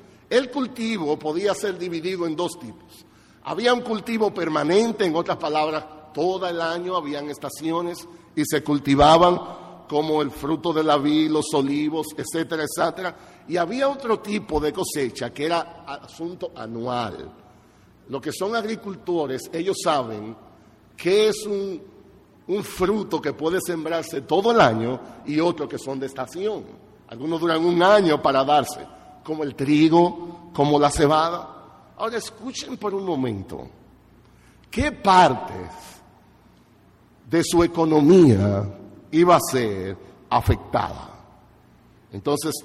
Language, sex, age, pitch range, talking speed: Spanish, male, 50-69, 145-185 Hz, 130 wpm